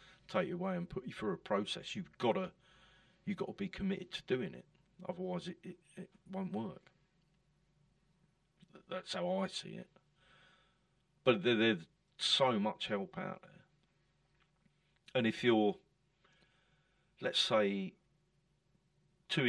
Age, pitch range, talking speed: 40-59, 175-185 Hz, 130 wpm